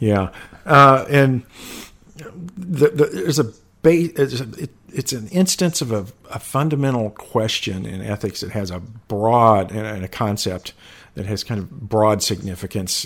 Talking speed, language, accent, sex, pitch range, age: 160 wpm, English, American, male, 95-125 Hz, 50-69